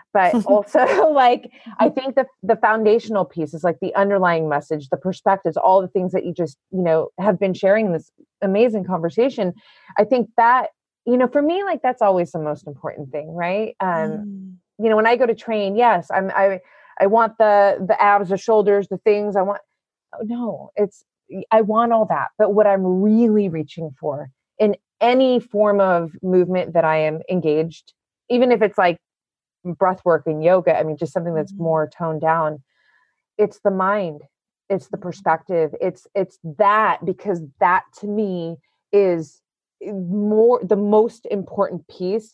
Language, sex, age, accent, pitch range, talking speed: English, female, 30-49, American, 170-215 Hz, 175 wpm